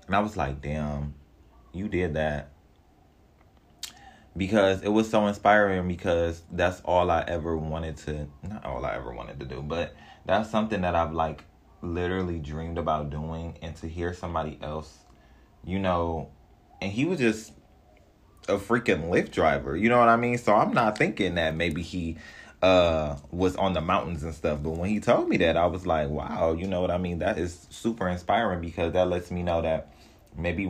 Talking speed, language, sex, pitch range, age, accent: 190 wpm, English, male, 75-90 Hz, 20-39, American